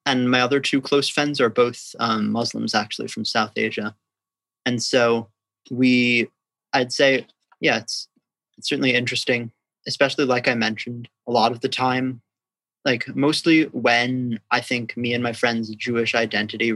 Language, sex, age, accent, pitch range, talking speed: English, male, 30-49, American, 110-125 Hz, 160 wpm